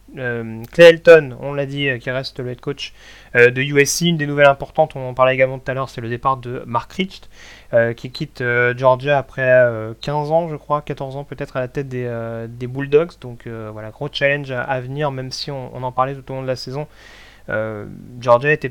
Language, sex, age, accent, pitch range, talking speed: French, male, 30-49, French, 125-145 Hz, 205 wpm